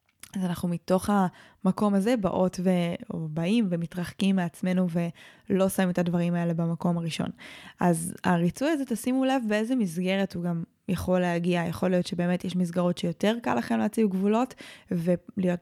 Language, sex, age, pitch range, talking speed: Hebrew, female, 20-39, 175-210 Hz, 150 wpm